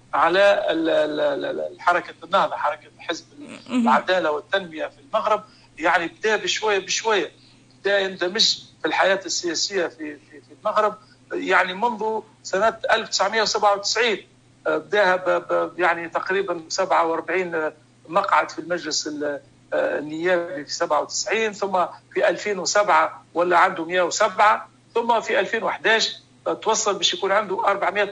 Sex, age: male, 50-69